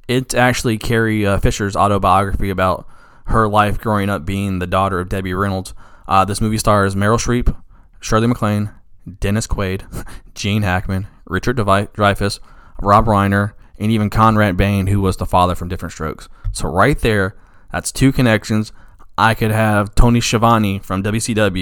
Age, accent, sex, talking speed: 20-39, American, male, 155 wpm